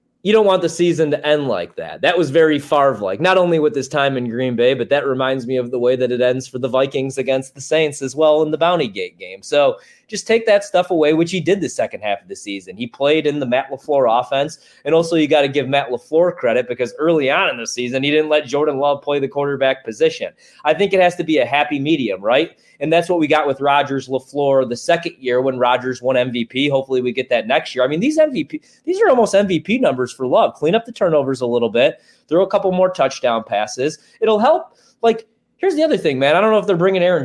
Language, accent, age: English, American, 20-39